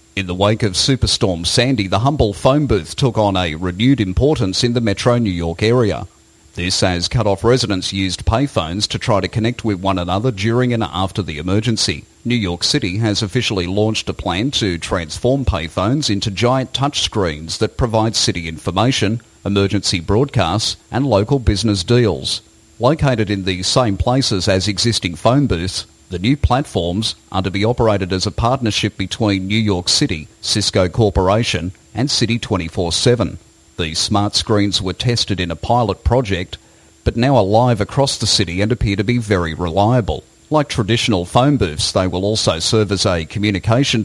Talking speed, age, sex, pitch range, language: 170 wpm, 40-59, male, 95-120 Hz, English